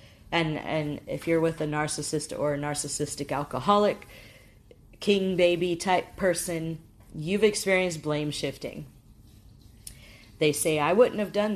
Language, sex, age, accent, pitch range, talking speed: English, female, 40-59, American, 140-175 Hz, 130 wpm